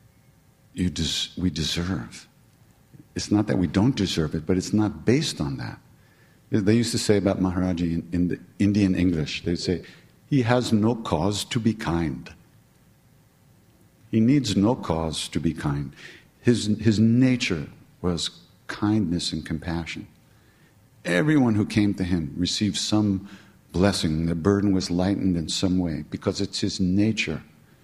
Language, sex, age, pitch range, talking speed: English, male, 50-69, 90-105 Hz, 150 wpm